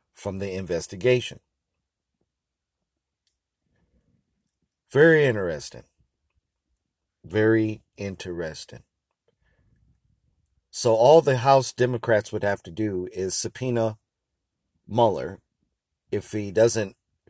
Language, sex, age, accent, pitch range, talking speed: English, male, 50-69, American, 95-120 Hz, 75 wpm